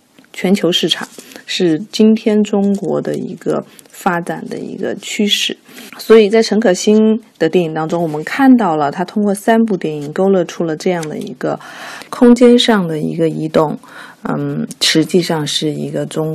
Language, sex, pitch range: Chinese, female, 160-220 Hz